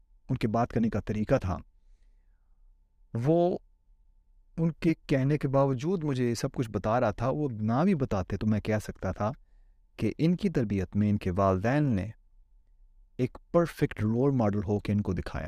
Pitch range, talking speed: 100-120 Hz, 180 wpm